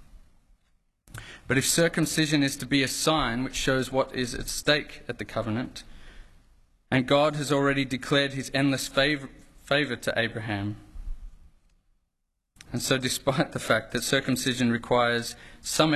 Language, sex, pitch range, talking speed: English, male, 105-140 Hz, 140 wpm